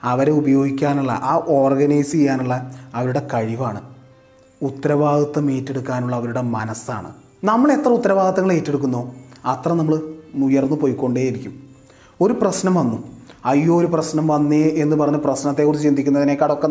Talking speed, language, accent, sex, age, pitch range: 110 wpm, Malayalam, native, male, 30-49, 125-150 Hz